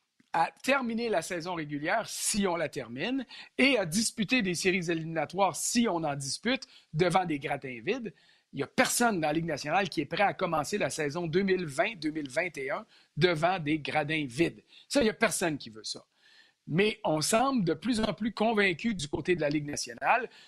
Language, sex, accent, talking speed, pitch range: French, male, Canadian, 190 wpm, 160-225 Hz